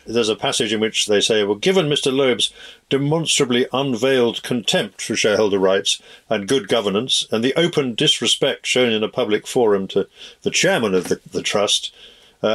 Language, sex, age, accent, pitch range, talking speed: English, male, 50-69, British, 110-140 Hz, 175 wpm